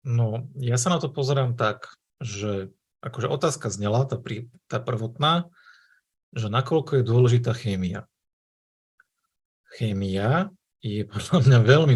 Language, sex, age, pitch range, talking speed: Slovak, male, 40-59, 115-135 Hz, 125 wpm